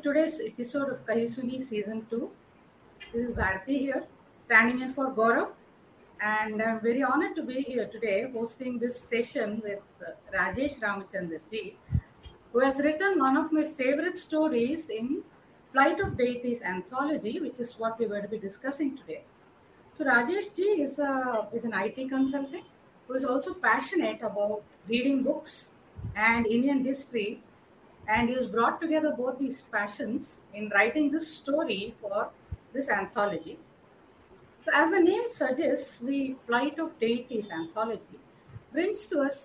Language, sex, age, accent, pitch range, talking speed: Hindi, female, 30-49, native, 220-280 Hz, 150 wpm